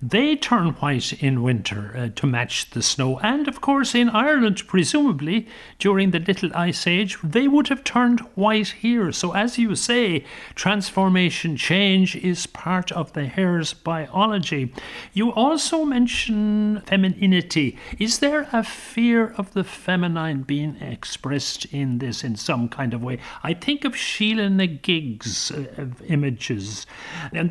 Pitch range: 145-210 Hz